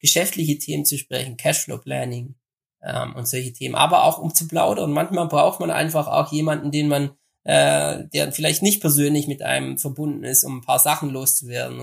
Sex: male